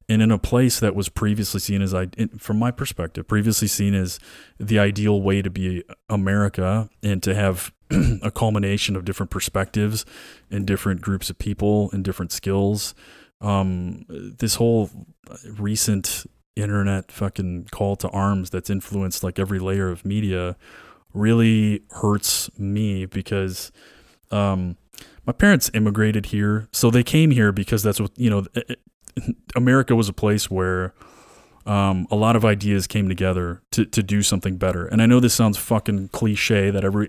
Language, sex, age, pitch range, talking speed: English, male, 20-39, 95-110 Hz, 155 wpm